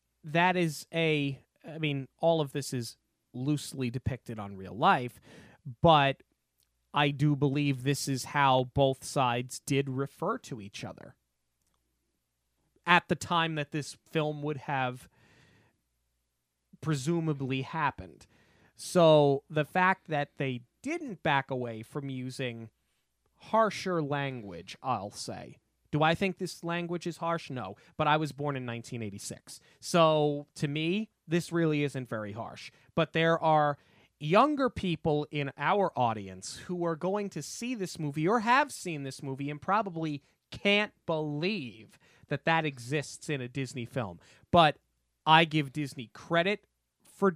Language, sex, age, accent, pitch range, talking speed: English, male, 30-49, American, 125-165 Hz, 140 wpm